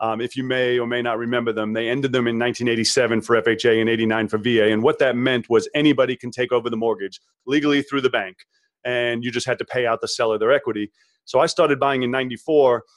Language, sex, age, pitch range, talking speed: English, male, 30-49, 115-145 Hz, 240 wpm